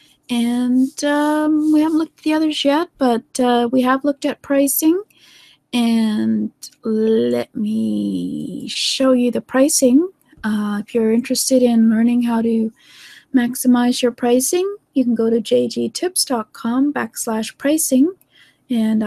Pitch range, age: 215-280 Hz, 30-49